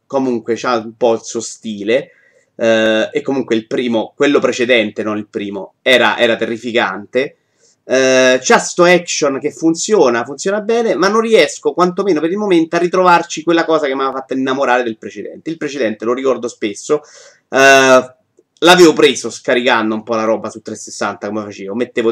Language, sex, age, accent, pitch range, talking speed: Italian, male, 30-49, native, 115-165 Hz, 175 wpm